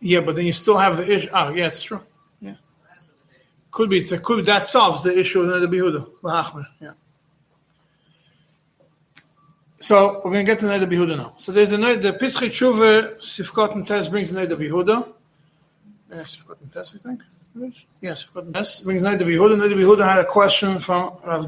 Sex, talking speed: male, 190 wpm